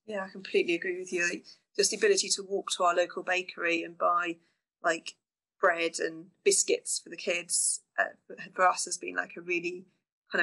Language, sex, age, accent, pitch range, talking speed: English, female, 30-49, British, 175-225 Hz, 190 wpm